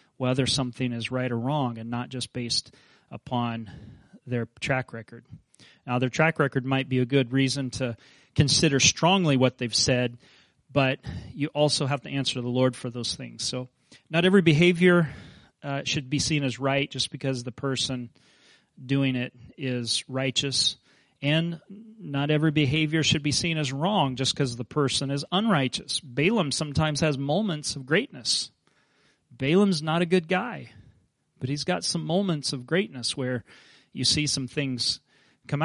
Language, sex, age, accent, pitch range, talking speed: English, male, 30-49, American, 125-150 Hz, 165 wpm